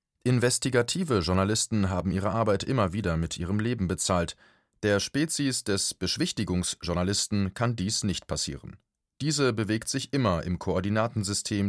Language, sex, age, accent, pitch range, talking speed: German, male, 30-49, German, 95-115 Hz, 130 wpm